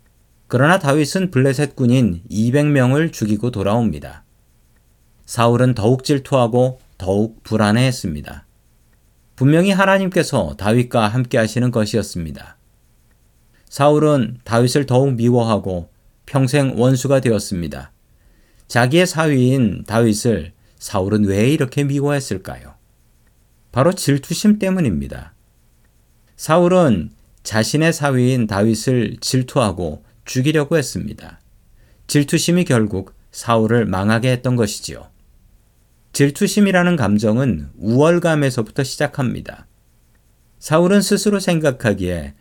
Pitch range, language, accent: 110-150 Hz, Korean, native